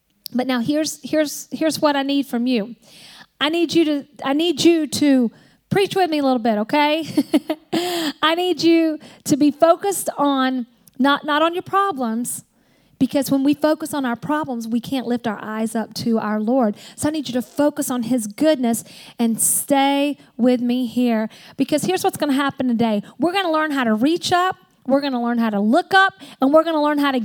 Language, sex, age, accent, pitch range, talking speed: English, female, 40-59, American, 235-310 Hz, 215 wpm